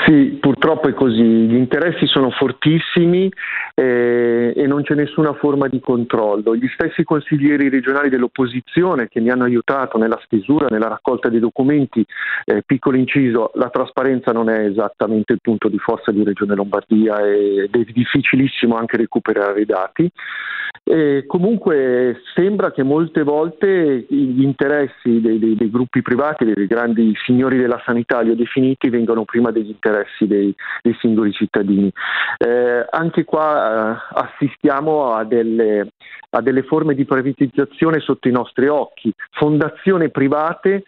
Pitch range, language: 115-150 Hz, Italian